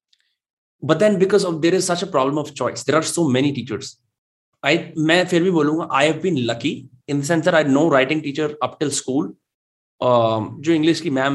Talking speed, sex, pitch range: 215 wpm, male, 130-165 Hz